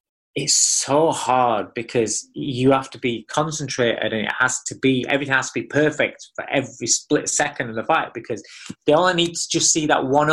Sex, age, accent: male, 20-39, British